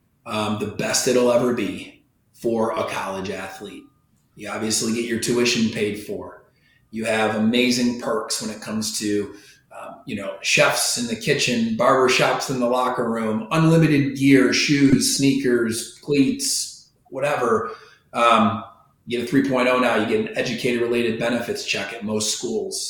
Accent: American